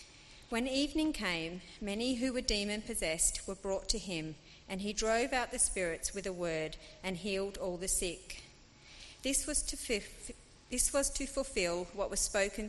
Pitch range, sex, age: 175-235 Hz, female, 40-59